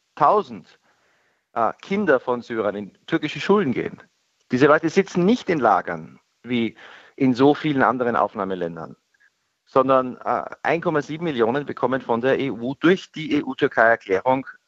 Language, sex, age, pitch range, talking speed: German, male, 50-69, 115-145 Hz, 130 wpm